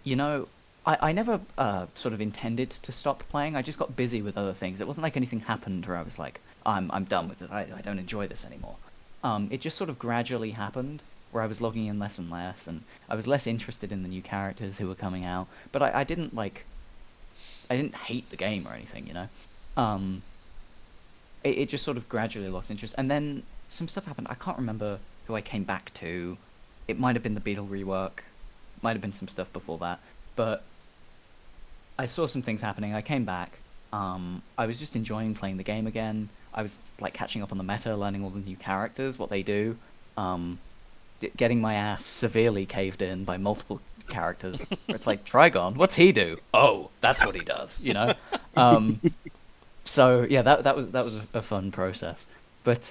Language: English